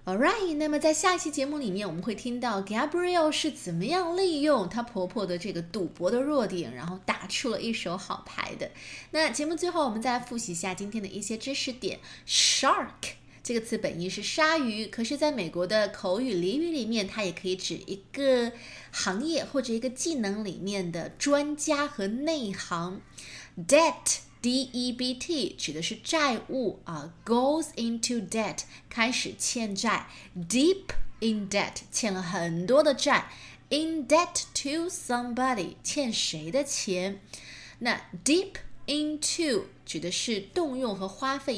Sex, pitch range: female, 190-285 Hz